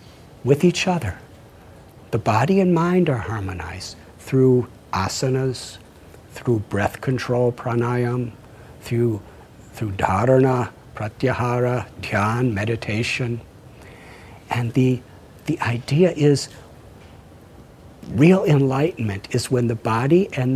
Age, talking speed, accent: 60-79, 95 wpm, American